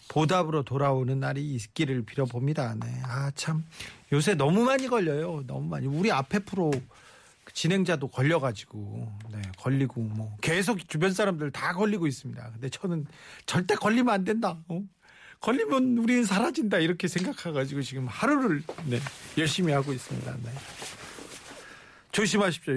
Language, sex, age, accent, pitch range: Korean, male, 40-59, native, 135-195 Hz